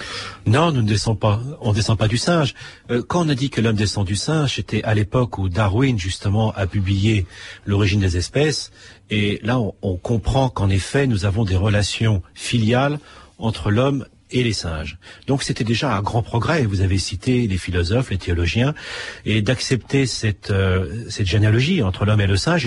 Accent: French